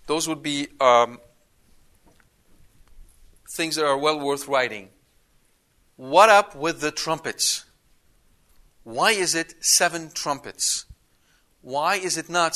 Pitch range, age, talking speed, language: 125-160 Hz, 40-59, 115 wpm, English